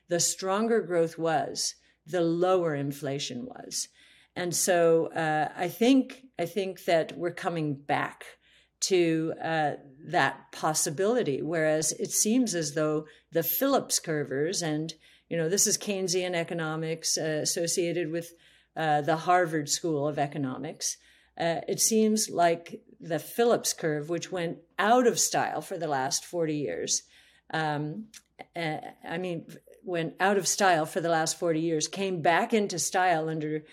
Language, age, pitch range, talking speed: English, 50-69, 155-195 Hz, 145 wpm